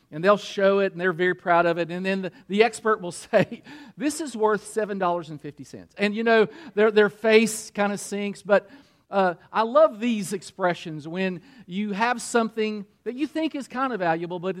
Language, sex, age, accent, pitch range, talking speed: English, male, 40-59, American, 175-225 Hz, 195 wpm